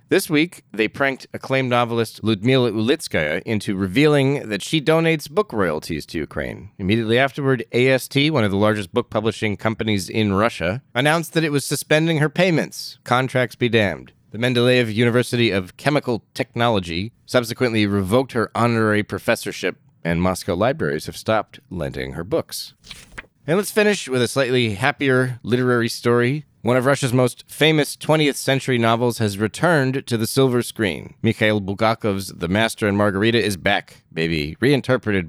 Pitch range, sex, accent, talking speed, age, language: 105-135 Hz, male, American, 155 wpm, 30-49, English